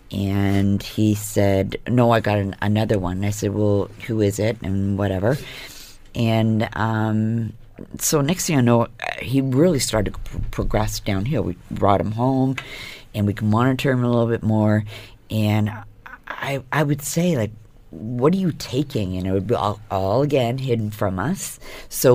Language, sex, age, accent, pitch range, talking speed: English, female, 50-69, American, 100-125 Hz, 170 wpm